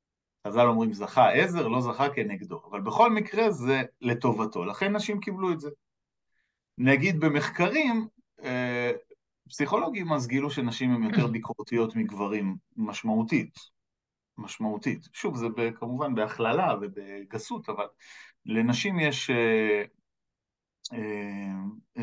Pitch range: 115-145 Hz